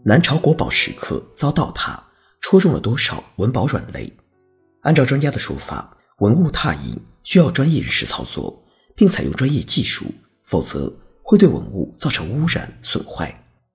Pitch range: 130-185 Hz